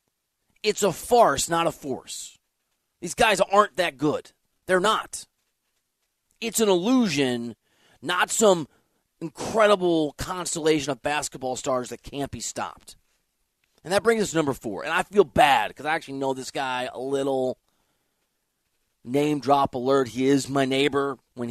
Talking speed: 150 wpm